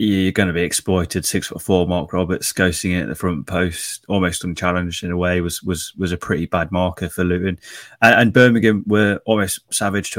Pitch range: 85-95 Hz